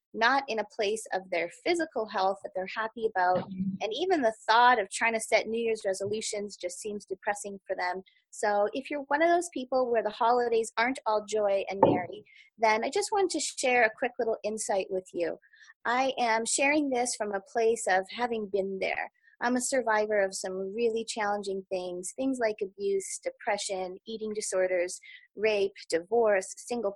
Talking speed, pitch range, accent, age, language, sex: 185 wpm, 190-245 Hz, American, 20-39, English, female